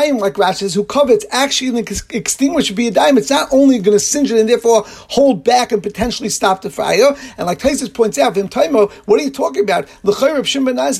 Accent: American